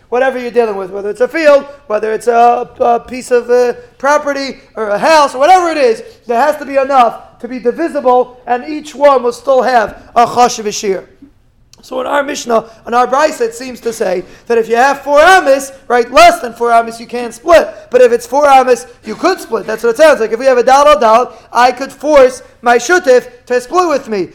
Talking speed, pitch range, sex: 230 wpm, 235-285 Hz, male